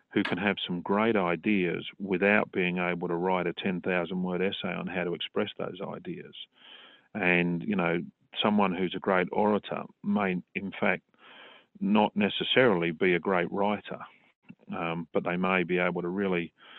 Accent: Australian